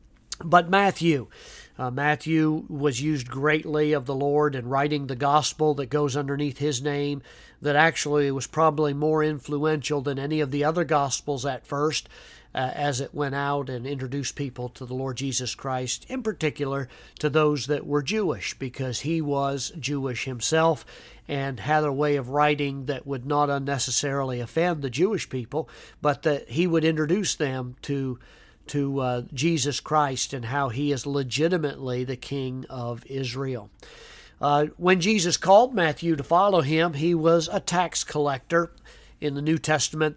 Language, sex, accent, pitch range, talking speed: English, male, American, 135-155 Hz, 165 wpm